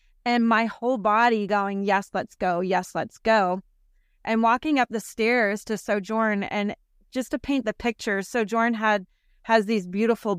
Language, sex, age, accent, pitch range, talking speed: English, female, 30-49, American, 195-230 Hz, 165 wpm